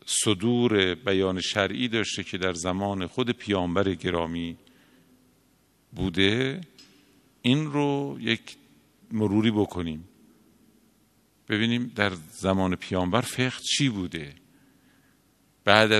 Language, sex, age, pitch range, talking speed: Persian, male, 50-69, 100-145 Hz, 90 wpm